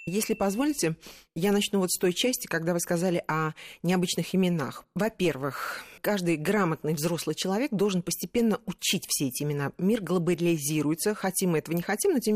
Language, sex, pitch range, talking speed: Russian, female, 160-205 Hz, 165 wpm